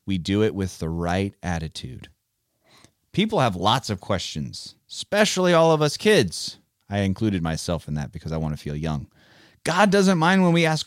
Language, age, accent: English, 30-49, American